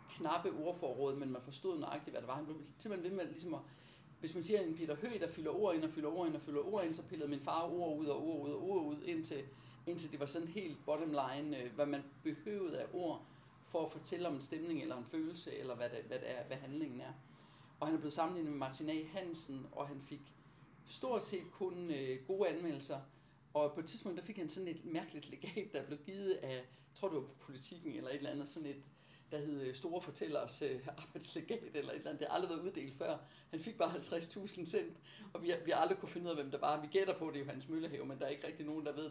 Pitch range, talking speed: 145-175 Hz, 250 wpm